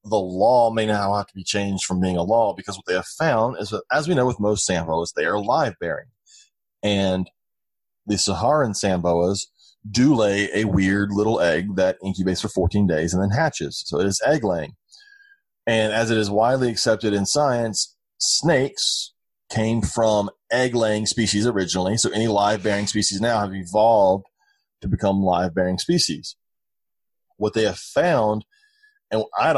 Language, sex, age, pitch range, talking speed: English, male, 30-49, 95-110 Hz, 175 wpm